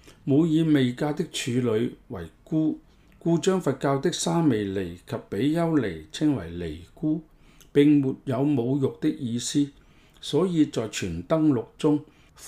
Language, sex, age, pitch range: Chinese, male, 50-69, 120-155 Hz